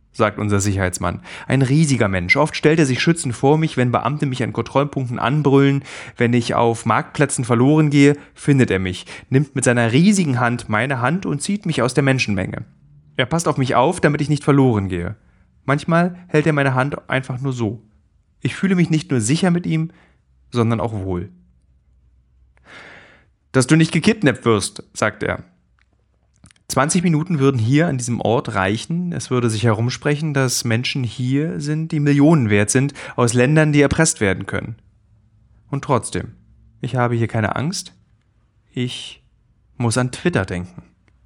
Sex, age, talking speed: male, 30-49, 165 wpm